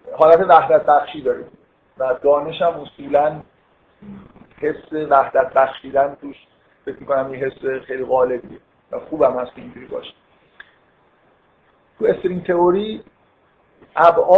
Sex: male